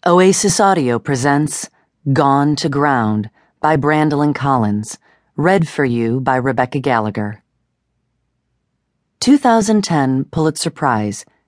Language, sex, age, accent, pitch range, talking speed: English, female, 40-59, American, 120-175 Hz, 95 wpm